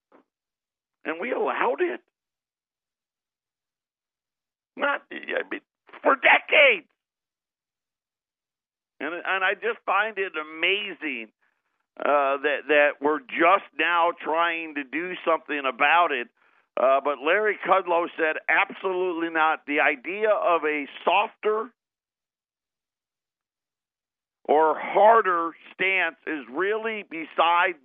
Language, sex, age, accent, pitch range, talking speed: English, male, 50-69, American, 160-200 Hz, 100 wpm